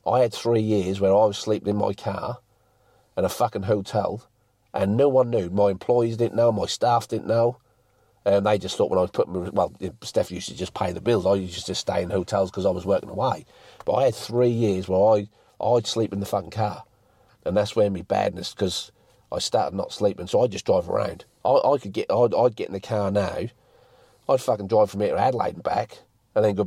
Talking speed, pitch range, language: 235 wpm, 100-115 Hz, English